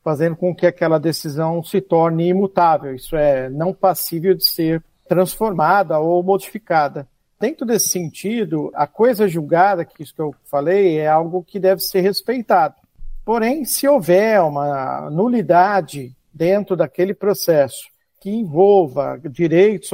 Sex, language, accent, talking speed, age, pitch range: male, Portuguese, Brazilian, 135 wpm, 50-69, 155-200 Hz